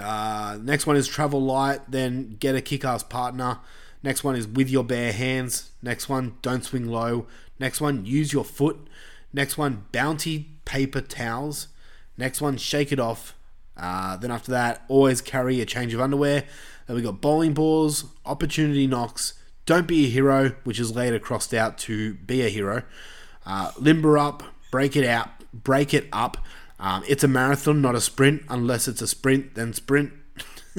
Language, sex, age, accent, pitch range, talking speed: English, male, 20-39, Australian, 120-145 Hz, 175 wpm